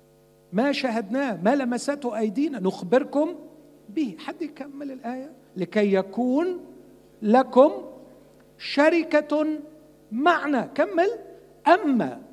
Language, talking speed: Arabic, 85 wpm